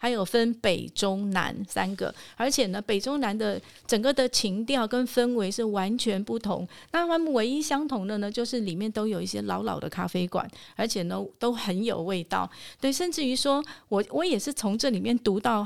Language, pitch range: Chinese, 190-240 Hz